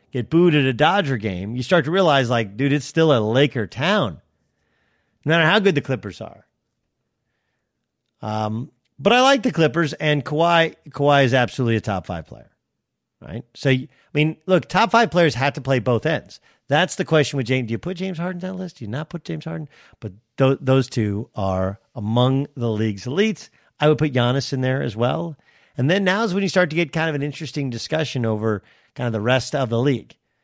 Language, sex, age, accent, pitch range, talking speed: English, male, 50-69, American, 115-160 Hz, 215 wpm